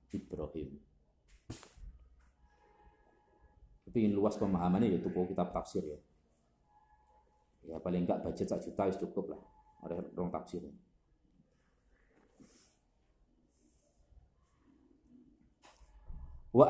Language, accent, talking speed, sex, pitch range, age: Indonesian, native, 85 wpm, male, 105-135 Hz, 40-59